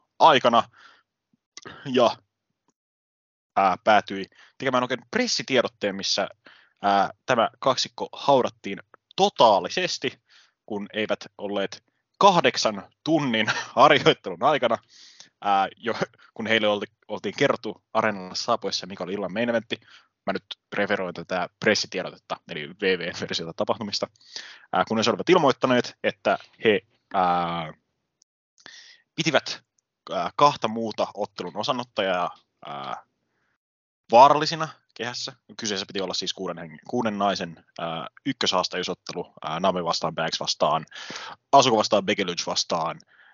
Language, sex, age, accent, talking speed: English, male, 20-39, Finnish, 100 wpm